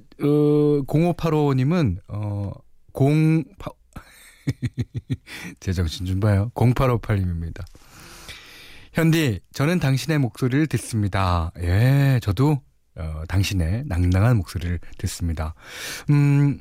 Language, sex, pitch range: Korean, male, 95-150 Hz